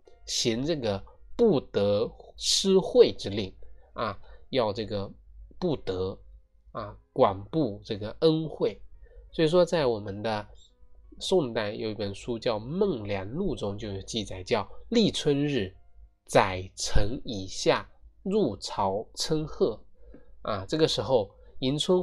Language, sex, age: Chinese, male, 20-39